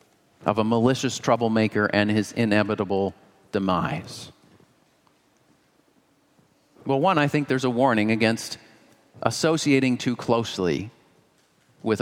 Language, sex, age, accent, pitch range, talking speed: English, male, 40-59, American, 100-125 Hz, 100 wpm